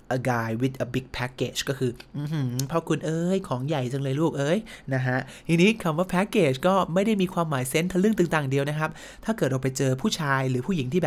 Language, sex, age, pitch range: Thai, male, 30-49, 135-170 Hz